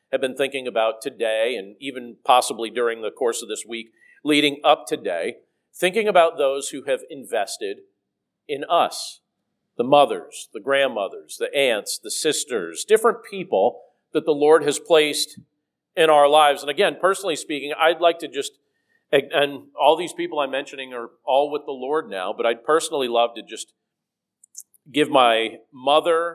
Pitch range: 120-170 Hz